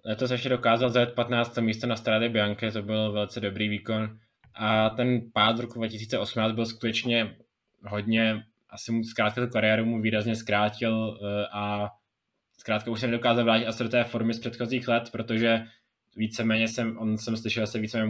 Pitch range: 105-115 Hz